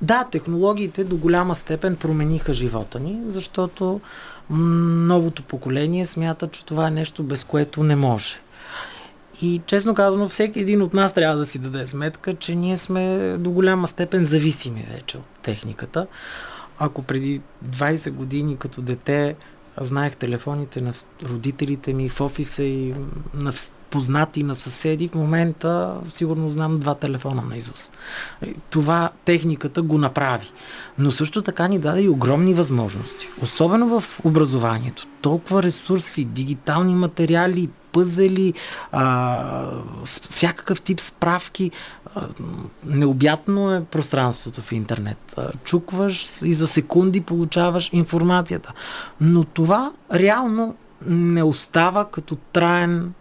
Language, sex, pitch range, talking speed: Bulgarian, male, 140-180 Hz, 125 wpm